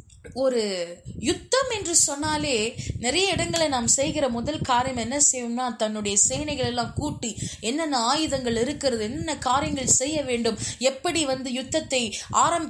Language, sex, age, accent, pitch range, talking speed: Tamil, female, 20-39, native, 240-360 Hz, 130 wpm